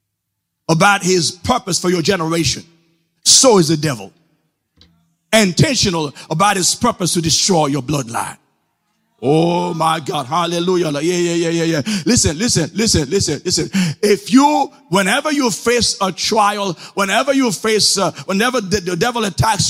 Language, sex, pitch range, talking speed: English, male, 155-220 Hz, 140 wpm